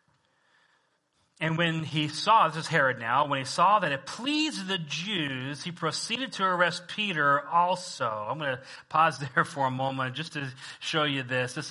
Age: 30-49